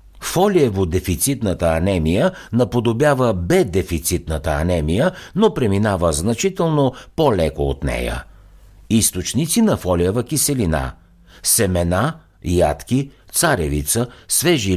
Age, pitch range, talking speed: 60-79, 85-125 Hz, 80 wpm